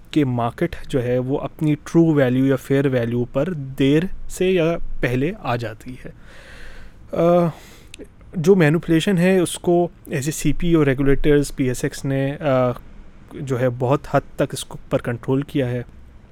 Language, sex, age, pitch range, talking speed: Urdu, male, 20-39, 125-160 Hz, 145 wpm